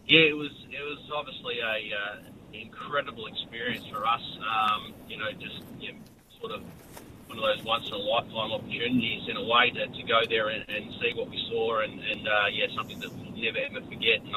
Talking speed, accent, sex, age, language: 215 wpm, Australian, male, 30-49, English